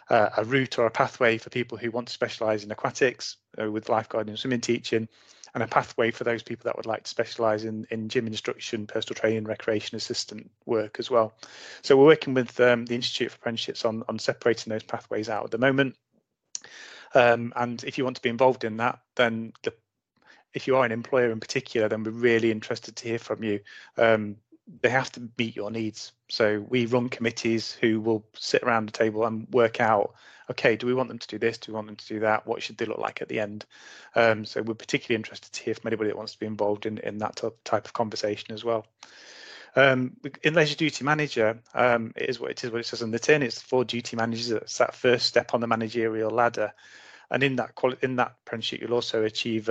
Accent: British